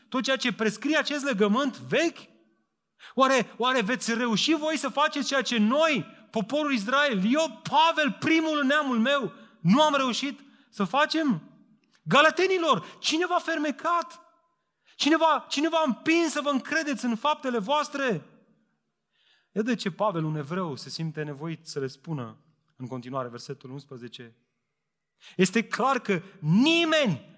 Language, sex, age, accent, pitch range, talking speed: Romanian, male, 30-49, native, 160-270 Hz, 140 wpm